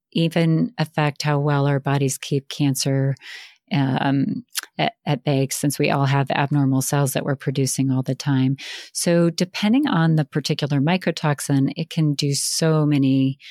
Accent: American